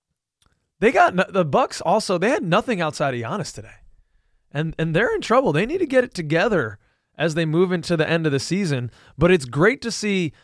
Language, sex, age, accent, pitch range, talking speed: English, male, 20-39, American, 145-190 Hz, 215 wpm